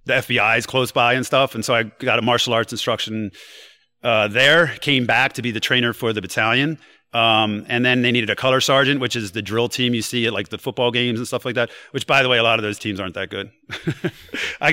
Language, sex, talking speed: English, male, 255 wpm